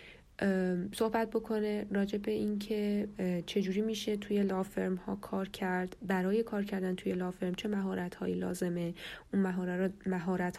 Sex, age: female, 10-29